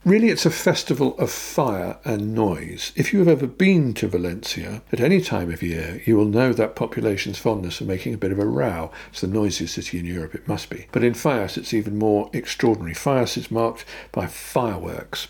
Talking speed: 210 wpm